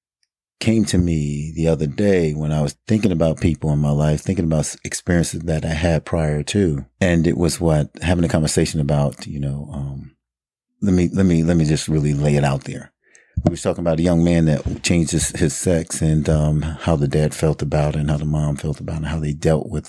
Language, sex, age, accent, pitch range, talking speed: English, male, 40-59, American, 75-85 Hz, 240 wpm